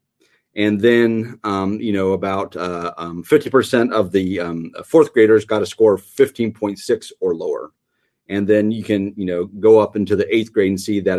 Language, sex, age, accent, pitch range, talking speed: English, male, 30-49, American, 95-115 Hz, 195 wpm